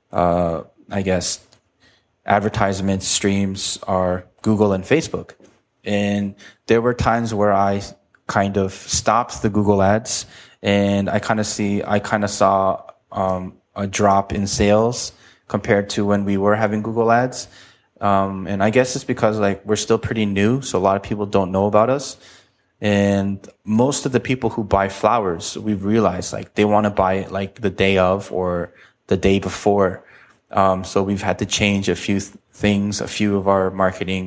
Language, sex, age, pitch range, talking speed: English, male, 20-39, 95-105 Hz, 175 wpm